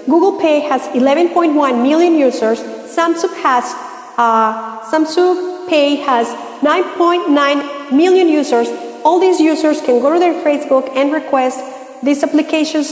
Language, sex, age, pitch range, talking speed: English, female, 40-59, 250-305 Hz, 125 wpm